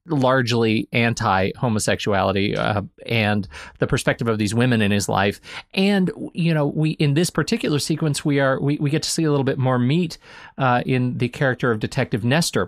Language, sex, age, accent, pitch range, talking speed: English, male, 30-49, American, 115-160 Hz, 190 wpm